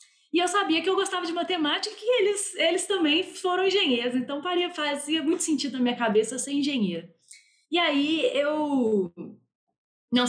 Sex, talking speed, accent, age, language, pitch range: female, 170 wpm, Brazilian, 20-39, Portuguese, 205-295 Hz